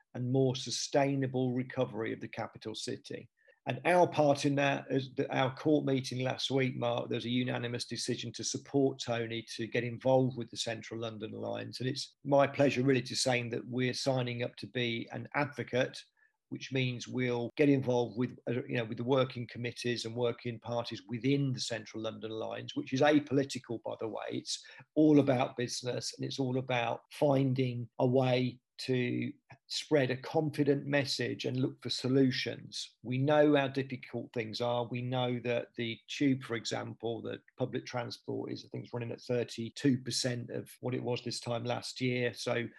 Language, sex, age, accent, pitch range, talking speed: English, male, 50-69, British, 120-135 Hz, 175 wpm